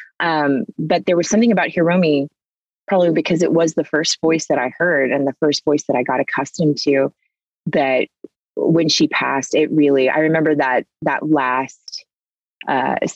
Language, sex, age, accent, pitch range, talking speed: English, female, 30-49, American, 150-210 Hz, 170 wpm